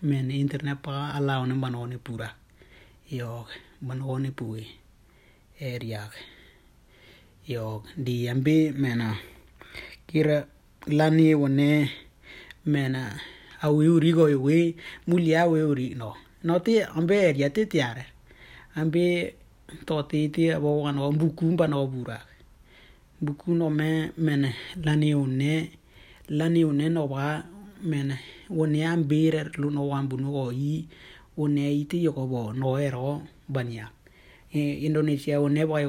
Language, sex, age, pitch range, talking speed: Indonesian, male, 30-49, 125-155 Hz, 105 wpm